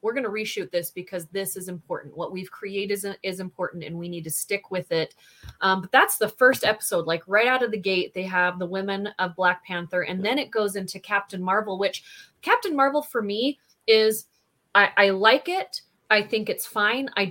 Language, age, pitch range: English, 30-49, 185-225 Hz